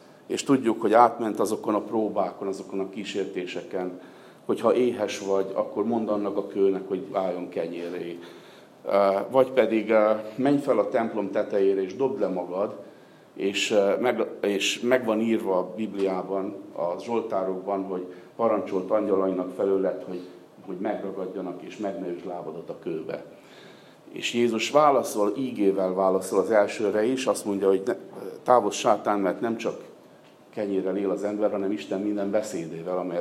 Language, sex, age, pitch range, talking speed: Hungarian, male, 50-69, 95-110 Hz, 145 wpm